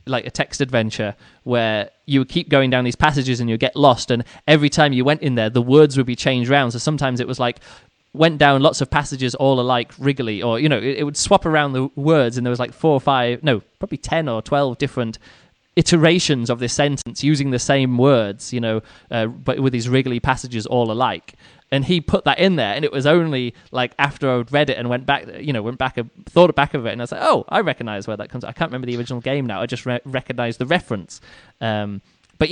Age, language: 20-39, English